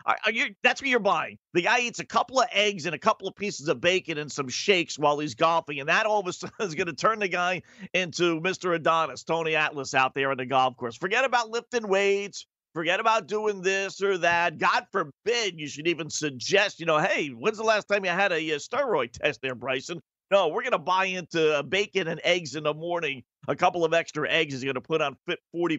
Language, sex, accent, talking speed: English, male, American, 240 wpm